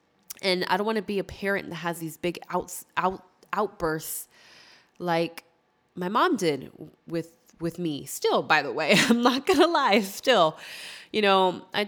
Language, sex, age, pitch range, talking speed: English, female, 20-39, 155-200 Hz, 175 wpm